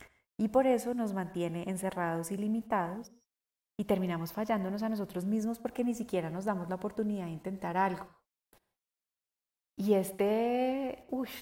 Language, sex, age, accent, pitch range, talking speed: Spanish, female, 30-49, Colombian, 175-220 Hz, 140 wpm